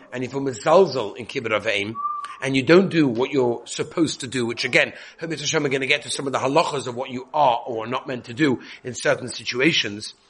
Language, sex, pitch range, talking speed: English, male, 130-165 Hz, 245 wpm